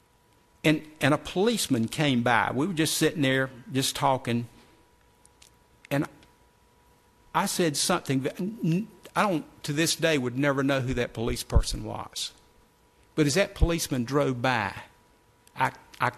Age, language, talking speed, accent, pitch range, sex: 50-69, English, 145 wpm, American, 120-155 Hz, male